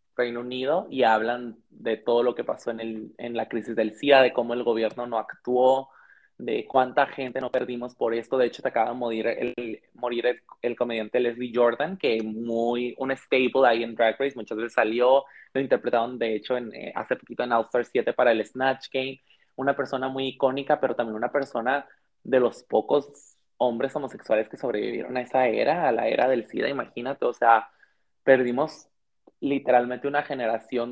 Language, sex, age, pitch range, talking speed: Spanish, male, 20-39, 120-130 Hz, 190 wpm